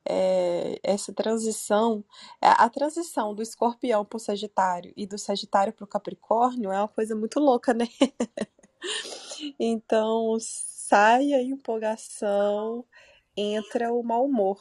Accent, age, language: Brazilian, 20-39, Portuguese